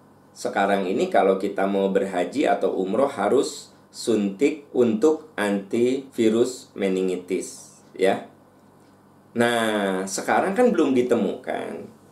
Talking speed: 95 wpm